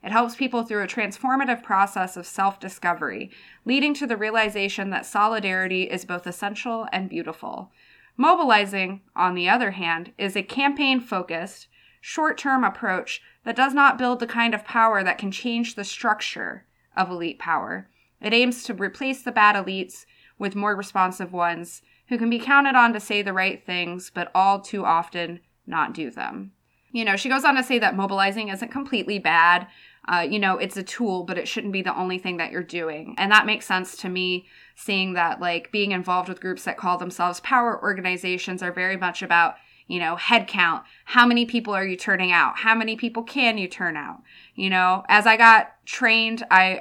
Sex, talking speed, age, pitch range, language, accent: female, 190 wpm, 20-39, 185-235 Hz, English, American